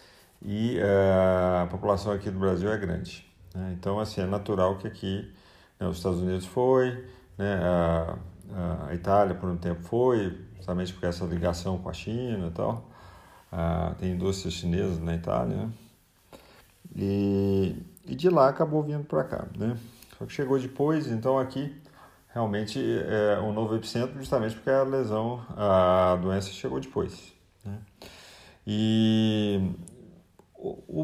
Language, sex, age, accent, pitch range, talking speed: Portuguese, male, 40-59, Brazilian, 90-115 Hz, 145 wpm